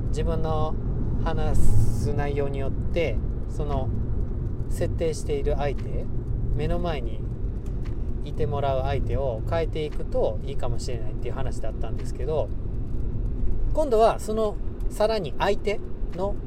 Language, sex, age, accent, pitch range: Japanese, male, 40-59, native, 115-195 Hz